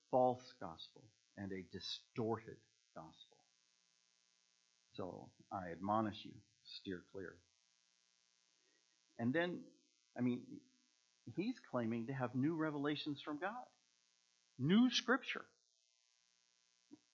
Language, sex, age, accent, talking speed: English, male, 50-69, American, 90 wpm